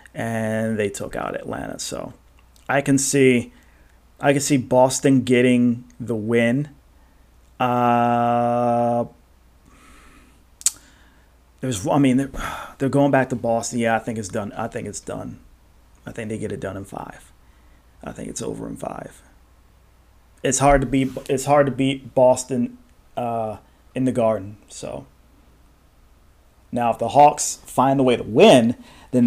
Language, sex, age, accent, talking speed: English, male, 30-49, American, 150 wpm